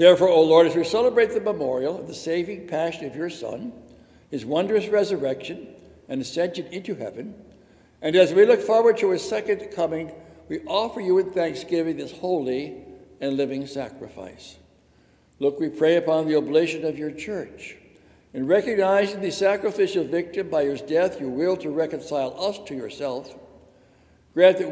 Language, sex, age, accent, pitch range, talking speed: English, male, 60-79, American, 150-205 Hz, 165 wpm